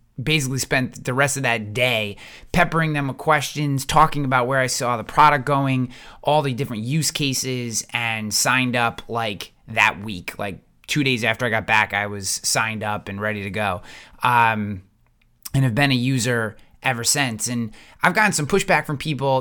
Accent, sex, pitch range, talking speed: American, male, 115-145 Hz, 185 wpm